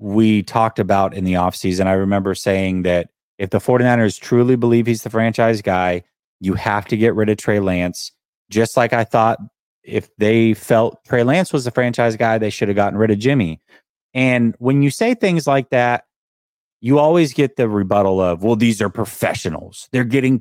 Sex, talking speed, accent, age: male, 195 wpm, American, 30-49